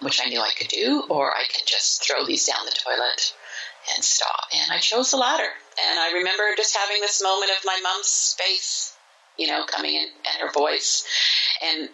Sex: female